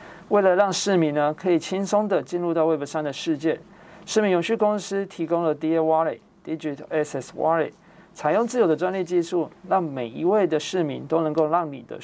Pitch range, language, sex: 150-185 Hz, Chinese, male